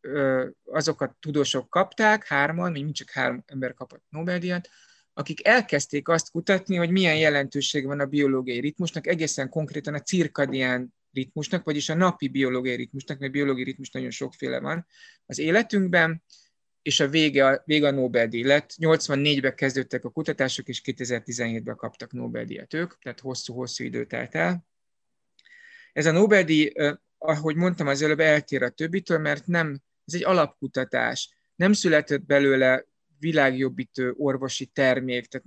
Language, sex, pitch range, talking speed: Hungarian, male, 130-160 Hz, 140 wpm